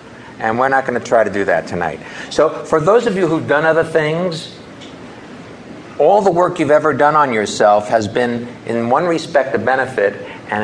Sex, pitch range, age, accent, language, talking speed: male, 110-160 Hz, 60-79, American, English, 190 wpm